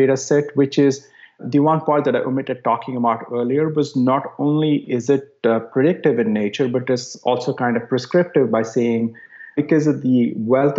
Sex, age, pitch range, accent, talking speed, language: male, 30-49, 115-140 Hz, Indian, 190 wpm, English